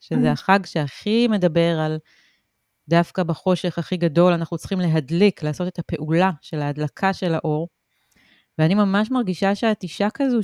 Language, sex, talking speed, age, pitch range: Hebrew, female, 145 wpm, 30-49, 170-225 Hz